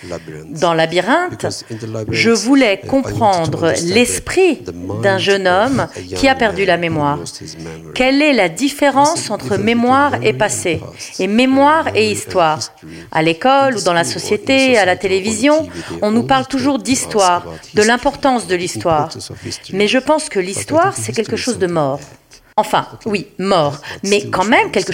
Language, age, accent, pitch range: French, 40-59, French, 160-255 Hz